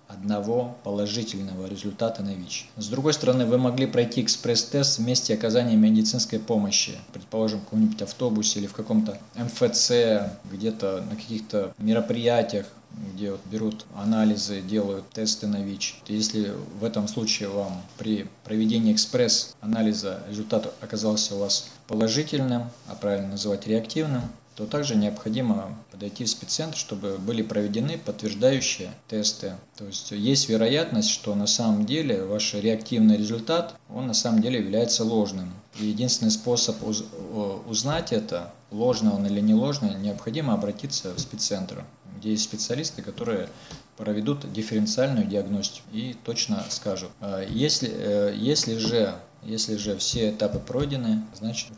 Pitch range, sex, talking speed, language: 105-120 Hz, male, 130 wpm, Russian